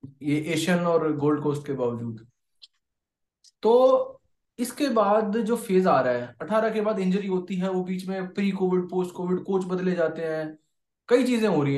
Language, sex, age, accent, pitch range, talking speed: Hindi, male, 20-39, native, 145-195 Hz, 185 wpm